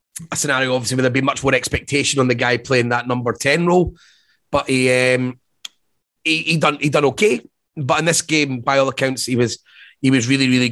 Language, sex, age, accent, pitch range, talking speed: English, male, 30-49, British, 130-155 Hz, 220 wpm